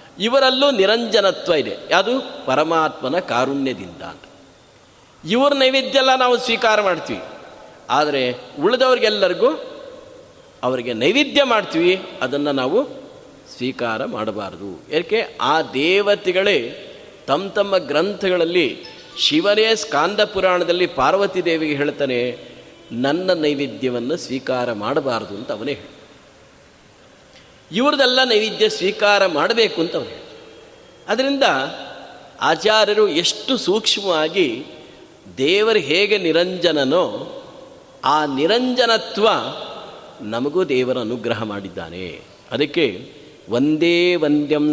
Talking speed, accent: 85 wpm, native